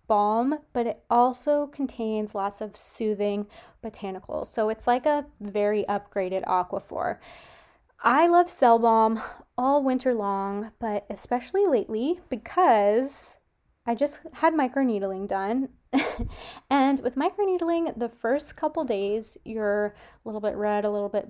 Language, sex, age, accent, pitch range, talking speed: English, female, 20-39, American, 210-265 Hz, 130 wpm